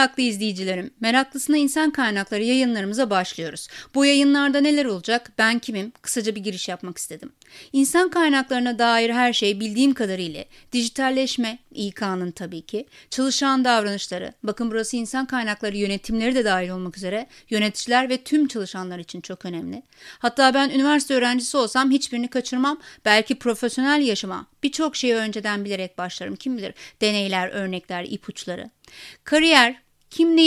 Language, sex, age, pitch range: Turkish, female, 30-49, 210-275 Hz